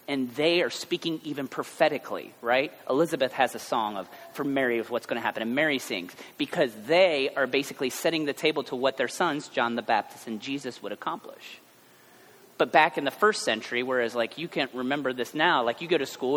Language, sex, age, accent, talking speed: English, male, 30-49, American, 215 wpm